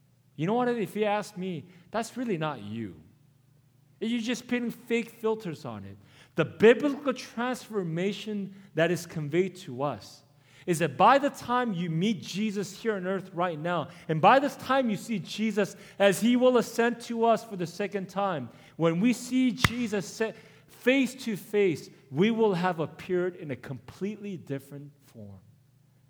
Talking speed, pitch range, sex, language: 165 wpm, 130-200 Hz, male, English